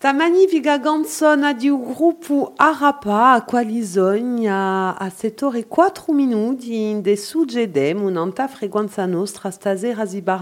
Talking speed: 65 wpm